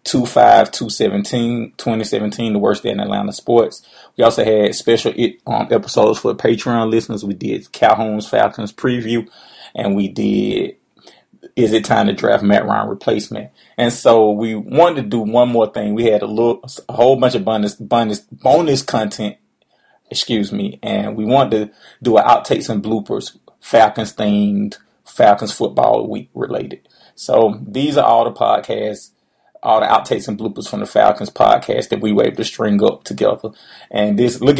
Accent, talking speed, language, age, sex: American, 170 wpm, English, 30-49, male